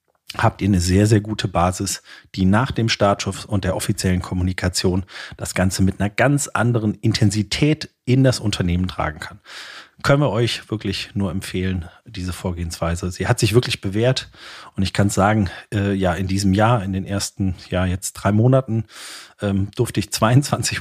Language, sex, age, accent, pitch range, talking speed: German, male, 40-59, German, 95-115 Hz, 175 wpm